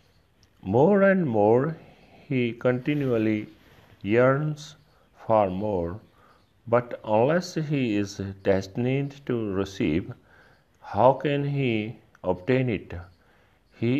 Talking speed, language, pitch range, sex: 95 wpm, Punjabi, 100-130 Hz, male